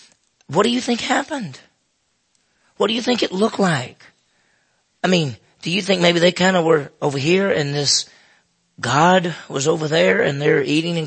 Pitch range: 135-175 Hz